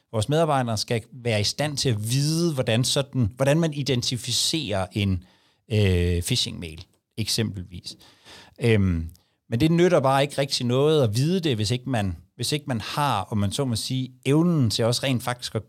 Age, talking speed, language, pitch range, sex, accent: 60-79, 180 wpm, Danish, 105-135 Hz, male, native